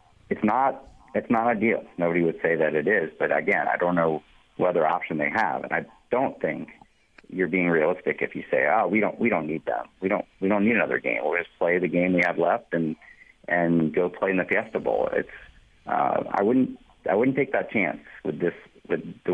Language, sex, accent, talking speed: English, male, American, 230 wpm